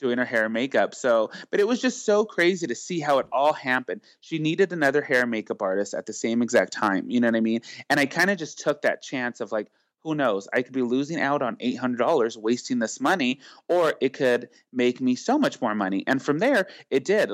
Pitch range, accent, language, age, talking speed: 120-170 Hz, American, English, 30-49, 245 wpm